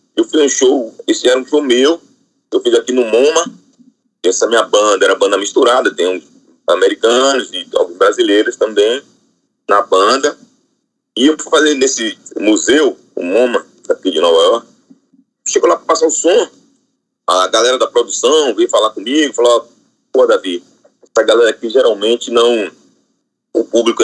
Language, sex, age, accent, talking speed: Portuguese, male, 40-59, Brazilian, 160 wpm